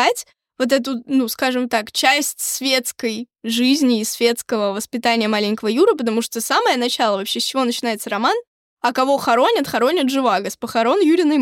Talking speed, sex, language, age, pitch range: 160 wpm, female, Russian, 20-39, 235-280 Hz